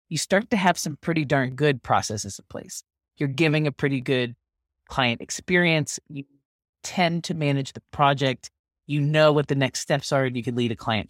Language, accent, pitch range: English, American, 120-165 Hz